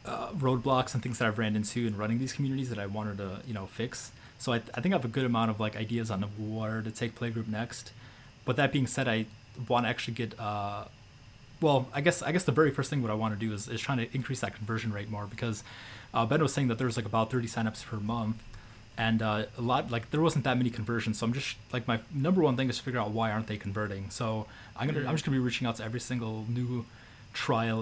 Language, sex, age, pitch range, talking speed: English, male, 20-39, 110-125 Hz, 270 wpm